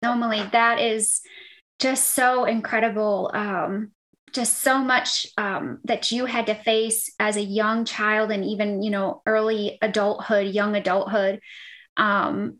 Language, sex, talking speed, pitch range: English, female, 140 wpm, 210-235 Hz